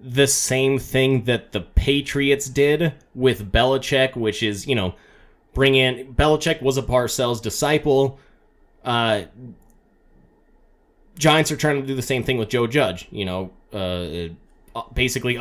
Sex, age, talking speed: male, 20-39, 140 wpm